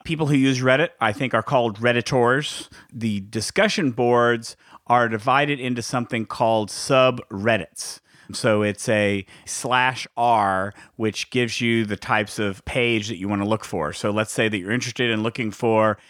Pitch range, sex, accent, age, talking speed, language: 105-130 Hz, male, American, 40-59, 170 wpm, English